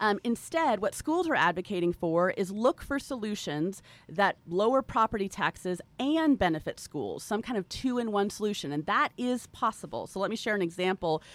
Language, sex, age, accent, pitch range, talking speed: English, female, 30-49, American, 170-220 Hz, 175 wpm